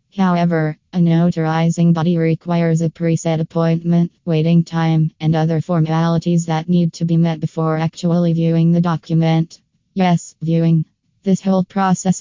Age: 20-39